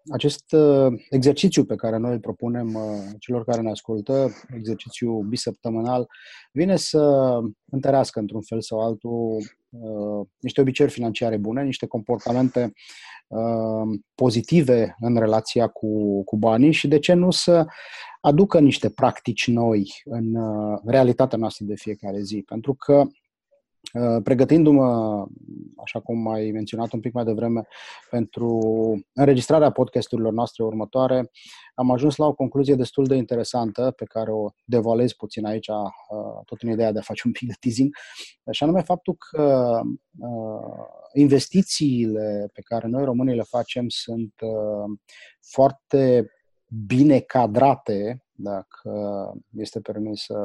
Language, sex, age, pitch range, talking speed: English, male, 30-49, 110-135 Hz, 135 wpm